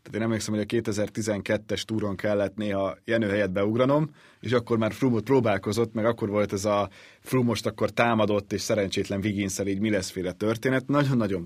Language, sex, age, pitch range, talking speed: Hungarian, male, 30-49, 100-120 Hz, 185 wpm